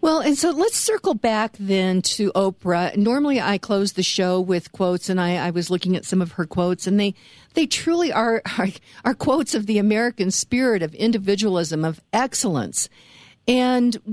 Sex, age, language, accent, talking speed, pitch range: female, 50-69, English, American, 185 wpm, 195-255 Hz